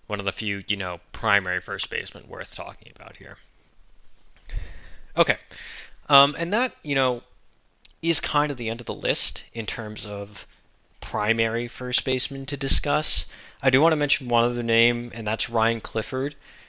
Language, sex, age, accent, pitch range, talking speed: English, male, 20-39, American, 100-120 Hz, 170 wpm